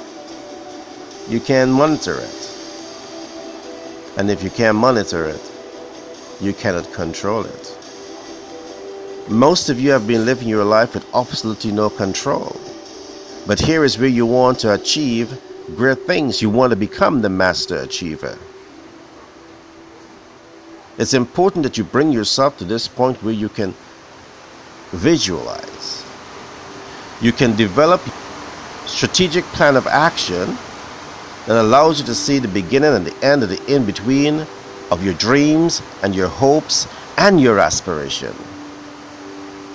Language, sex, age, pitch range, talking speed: Filipino, male, 50-69, 100-150 Hz, 130 wpm